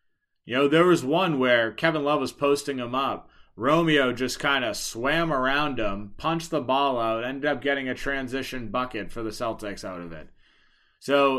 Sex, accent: male, American